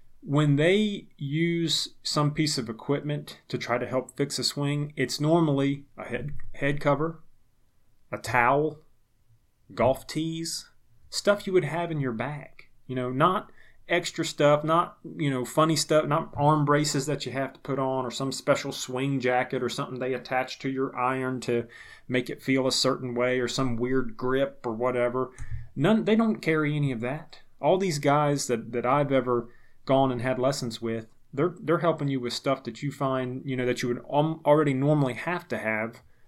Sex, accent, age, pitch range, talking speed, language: male, American, 30-49, 120-145 Hz, 185 wpm, English